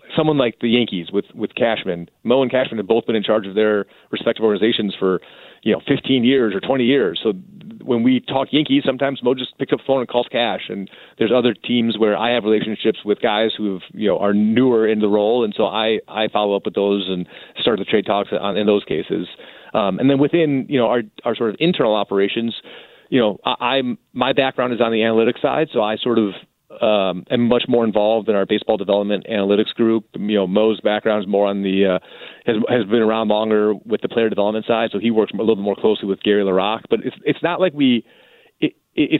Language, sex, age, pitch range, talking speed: English, male, 30-49, 100-125 Hz, 235 wpm